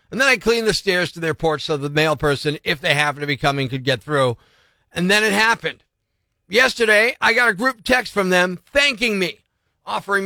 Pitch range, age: 160-225 Hz, 40-59